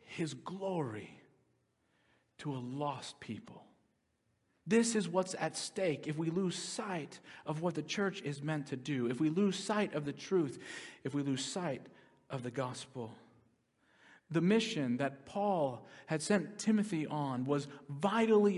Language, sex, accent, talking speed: English, male, American, 150 wpm